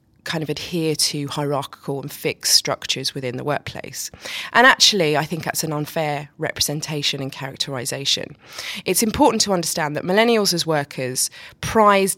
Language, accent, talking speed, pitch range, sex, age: English, British, 150 wpm, 145-185 Hz, female, 20-39